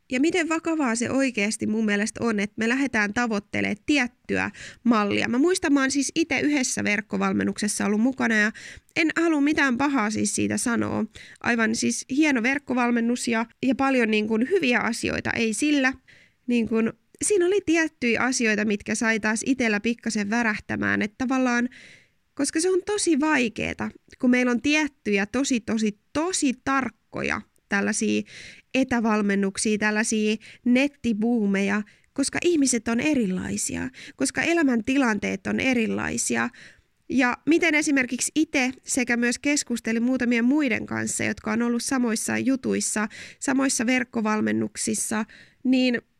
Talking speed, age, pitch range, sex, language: 130 wpm, 20-39, 215-275 Hz, female, Finnish